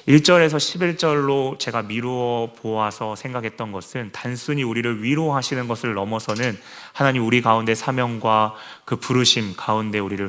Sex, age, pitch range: male, 30-49, 110-130 Hz